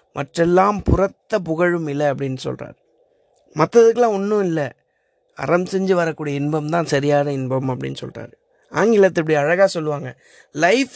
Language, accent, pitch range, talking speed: Tamil, native, 155-205 Hz, 120 wpm